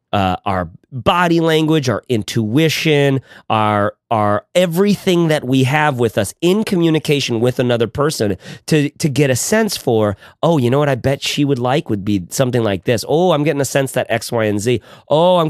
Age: 30-49